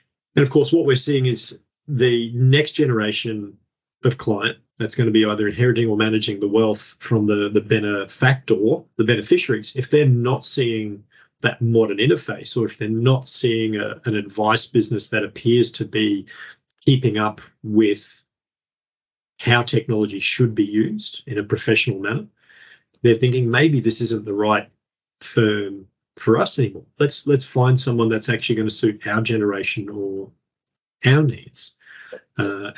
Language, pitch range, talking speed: English, 105-125 Hz, 155 wpm